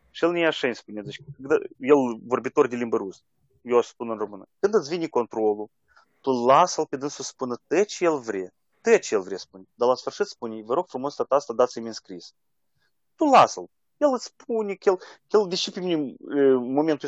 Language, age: Romanian, 30-49